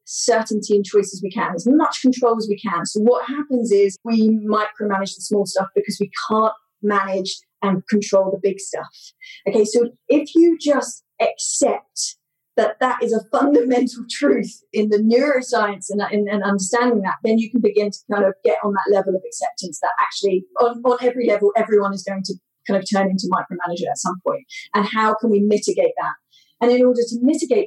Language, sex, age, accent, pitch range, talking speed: English, female, 30-49, British, 200-240 Hz, 200 wpm